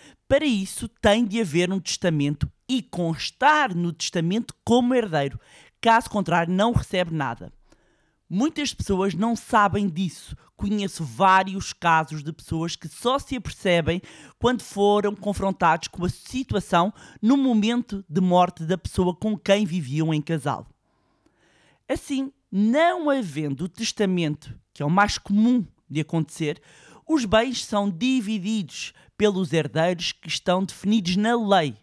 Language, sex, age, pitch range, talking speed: Portuguese, male, 20-39, 165-230 Hz, 135 wpm